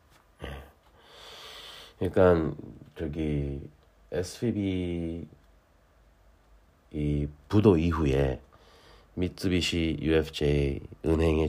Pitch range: 75-90 Hz